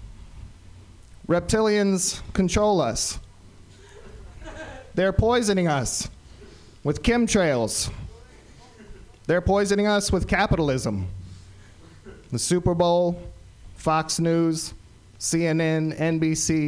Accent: American